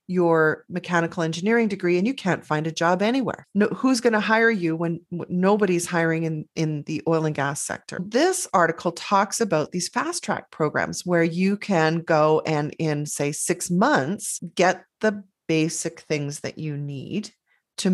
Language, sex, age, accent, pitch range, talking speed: English, female, 30-49, American, 160-205 Hz, 170 wpm